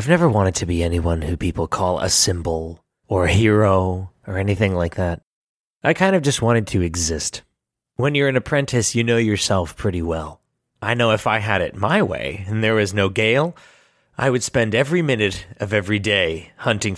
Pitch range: 100-150 Hz